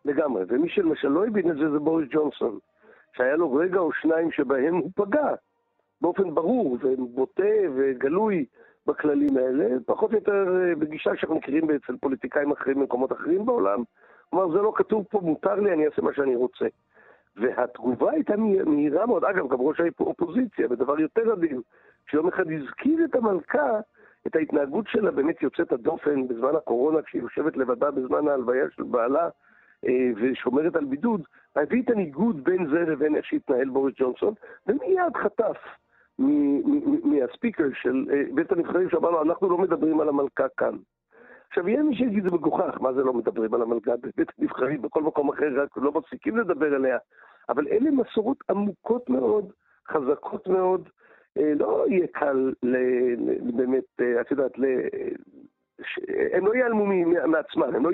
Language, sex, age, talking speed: Hebrew, male, 60-79, 160 wpm